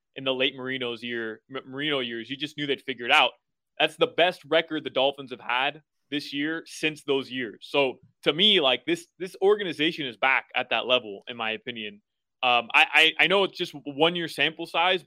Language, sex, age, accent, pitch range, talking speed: English, male, 20-39, American, 130-155 Hz, 205 wpm